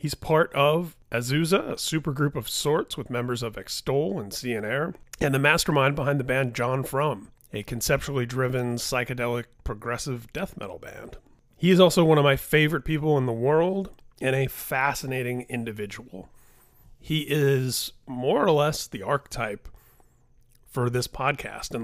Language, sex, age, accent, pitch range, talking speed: English, male, 30-49, American, 120-150 Hz, 155 wpm